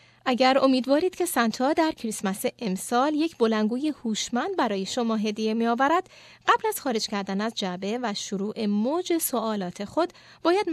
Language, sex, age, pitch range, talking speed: Persian, female, 30-49, 205-295 Hz, 150 wpm